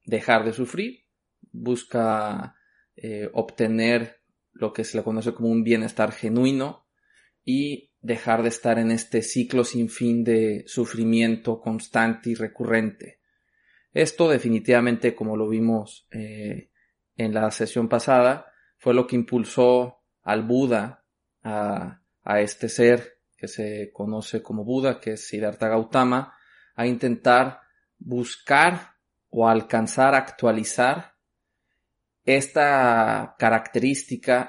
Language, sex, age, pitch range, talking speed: Spanish, male, 20-39, 110-125 Hz, 115 wpm